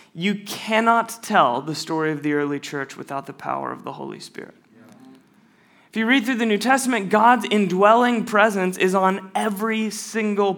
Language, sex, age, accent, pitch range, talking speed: English, male, 20-39, American, 165-210 Hz, 170 wpm